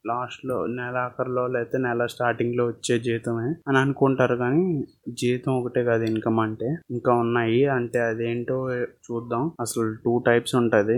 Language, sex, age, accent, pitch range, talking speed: Telugu, male, 20-39, native, 115-130 Hz, 150 wpm